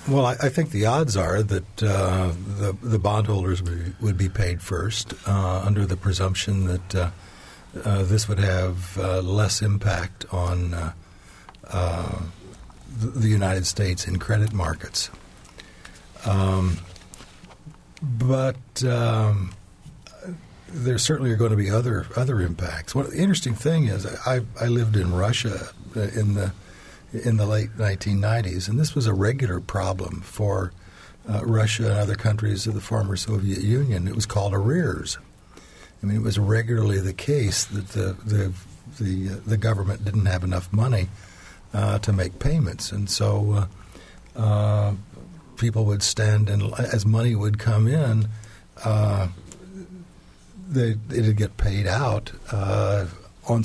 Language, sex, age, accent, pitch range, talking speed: English, male, 60-79, American, 95-115 Hz, 145 wpm